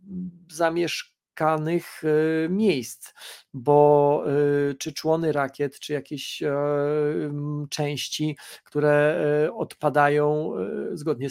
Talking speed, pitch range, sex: 65 wpm, 135-155 Hz, male